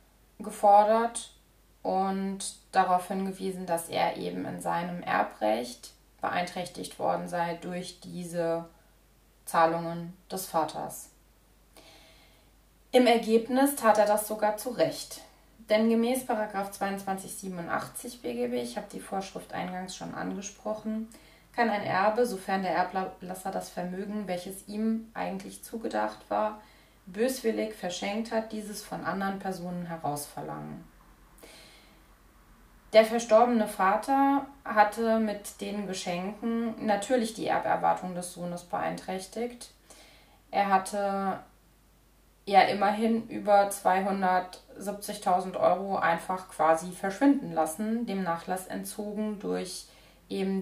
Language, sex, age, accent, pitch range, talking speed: German, female, 20-39, German, 175-215 Hz, 105 wpm